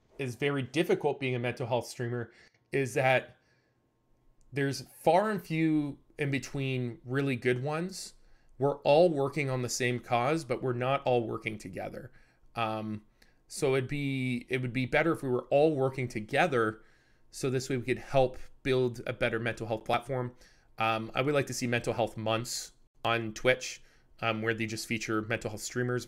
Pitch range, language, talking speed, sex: 115-135 Hz, English, 175 wpm, male